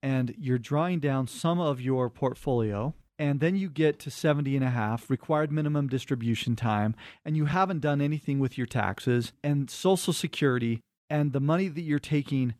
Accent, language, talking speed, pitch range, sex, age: American, English, 180 wpm, 130-165 Hz, male, 40-59